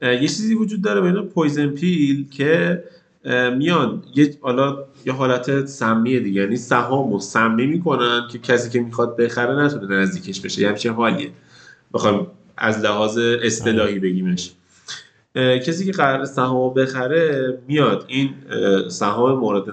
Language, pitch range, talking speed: Persian, 110-145 Hz, 135 wpm